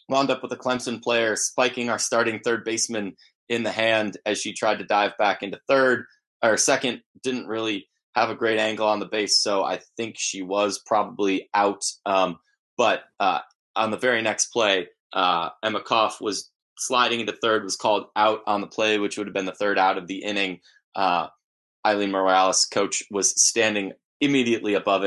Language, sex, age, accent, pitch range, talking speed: English, male, 20-39, American, 95-120 Hz, 190 wpm